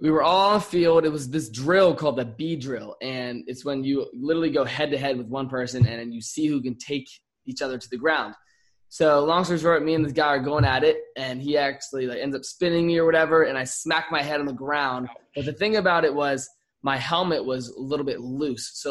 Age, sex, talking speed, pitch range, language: 20-39, male, 255 wpm, 135-165 Hz, English